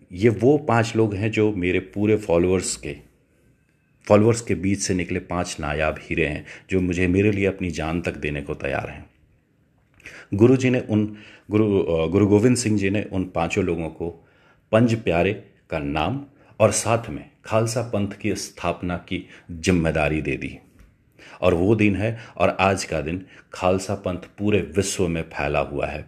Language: Hindi